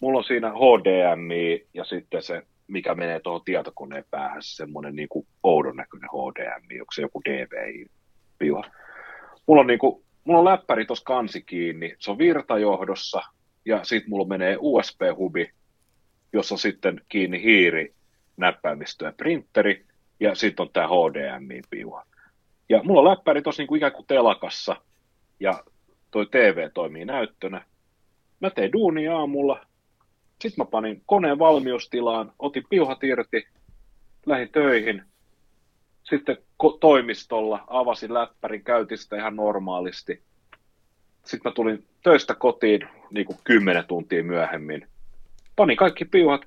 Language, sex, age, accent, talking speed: Finnish, male, 30-49, native, 130 wpm